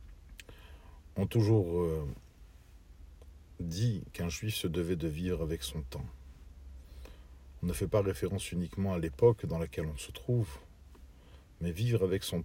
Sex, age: male, 50-69